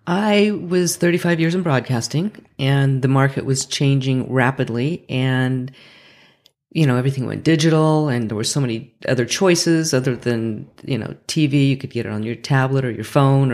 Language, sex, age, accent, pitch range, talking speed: English, female, 40-59, American, 130-150 Hz, 175 wpm